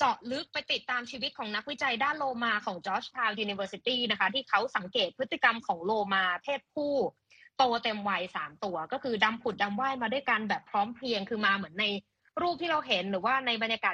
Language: Thai